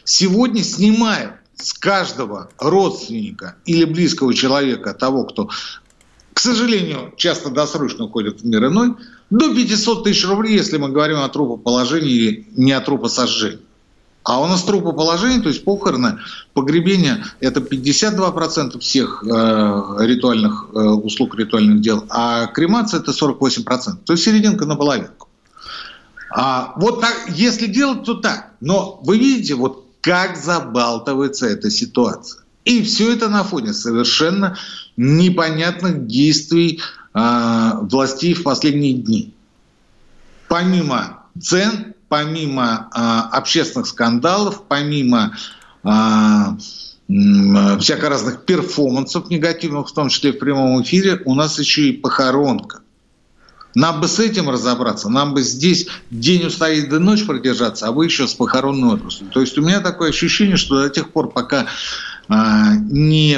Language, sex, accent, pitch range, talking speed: Russian, male, native, 130-200 Hz, 135 wpm